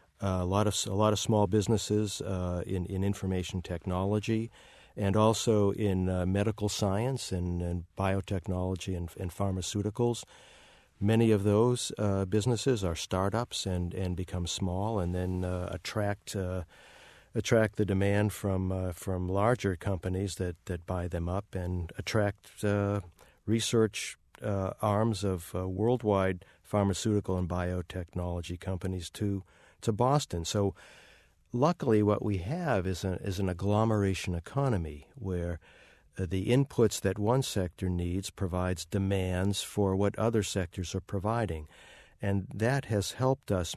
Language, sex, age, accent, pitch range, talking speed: English, male, 50-69, American, 90-105 Hz, 140 wpm